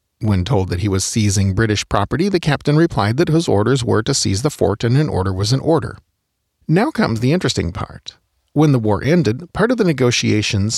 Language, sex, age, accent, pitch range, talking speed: English, male, 40-59, American, 100-145 Hz, 210 wpm